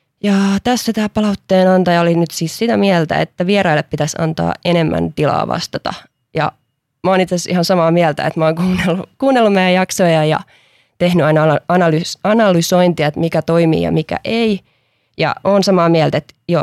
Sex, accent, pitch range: female, native, 150-180 Hz